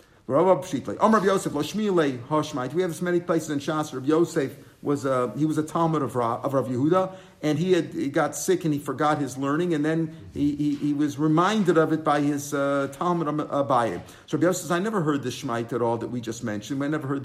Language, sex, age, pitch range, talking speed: English, male, 50-69, 140-170 Hz, 215 wpm